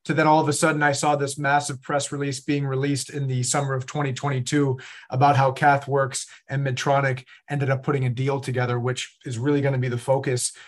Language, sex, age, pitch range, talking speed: English, male, 40-59, 125-140 Hz, 210 wpm